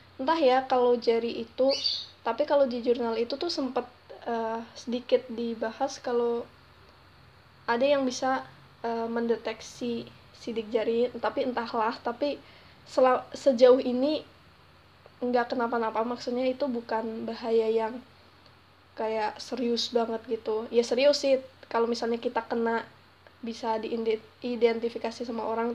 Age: 20-39